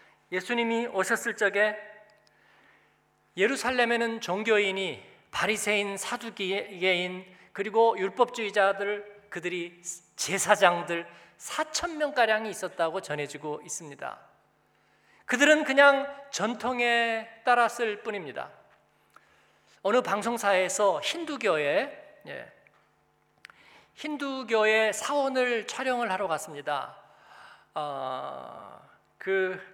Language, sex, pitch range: Korean, male, 185-240 Hz